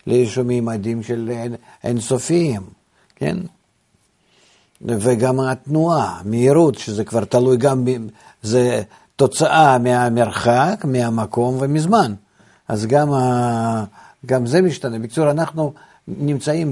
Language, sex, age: Hebrew, male, 50-69